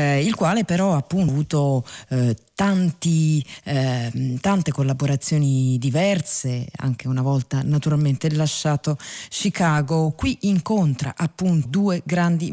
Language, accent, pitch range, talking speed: Italian, native, 140-180 Hz, 105 wpm